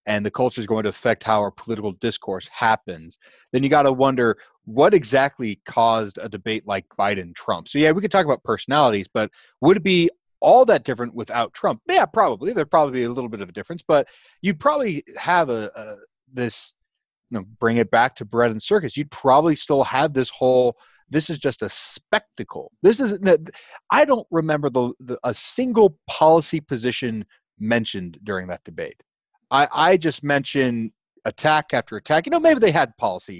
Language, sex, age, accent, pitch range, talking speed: English, male, 30-49, American, 120-180 Hz, 190 wpm